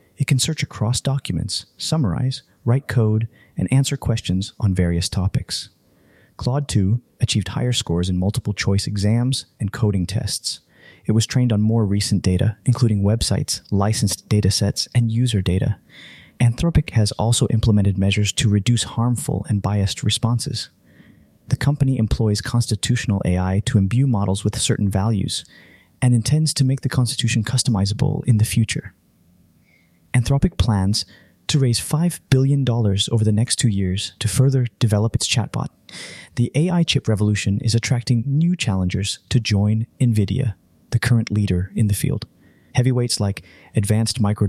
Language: English